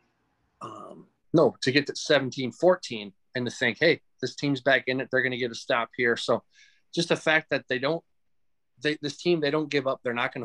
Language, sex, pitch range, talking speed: English, male, 115-140 Hz, 230 wpm